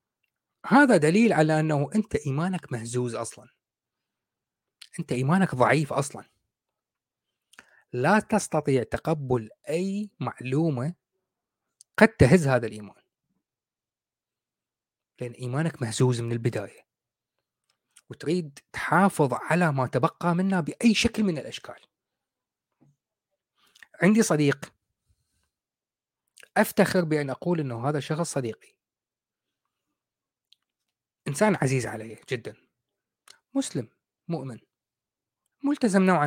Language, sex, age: Arabic, male, 30-49